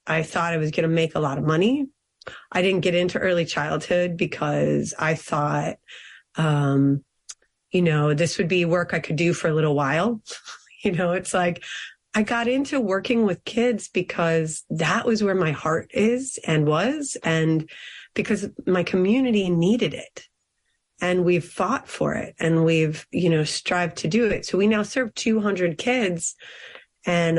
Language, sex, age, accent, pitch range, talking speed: English, female, 30-49, American, 165-220 Hz, 175 wpm